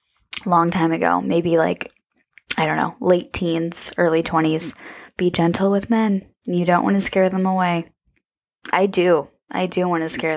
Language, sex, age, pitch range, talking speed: English, female, 20-39, 170-200 Hz, 175 wpm